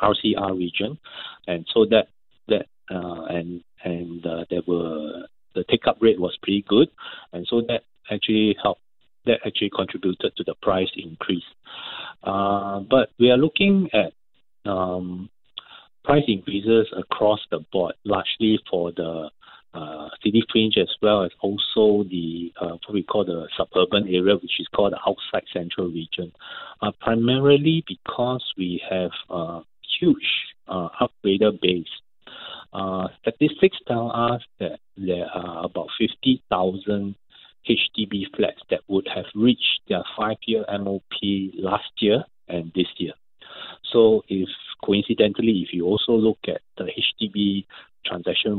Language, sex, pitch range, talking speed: English, male, 90-110 Hz, 140 wpm